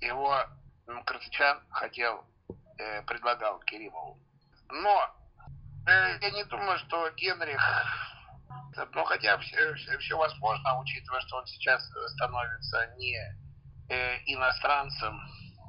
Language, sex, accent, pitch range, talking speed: Russian, male, native, 120-150 Hz, 105 wpm